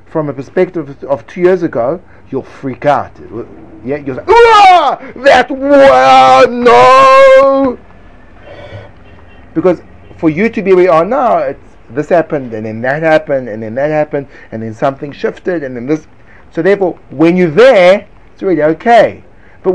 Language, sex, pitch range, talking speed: English, male, 120-180 Hz, 160 wpm